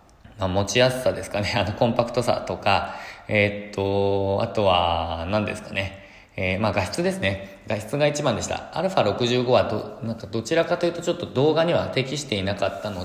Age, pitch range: 20-39, 95-125 Hz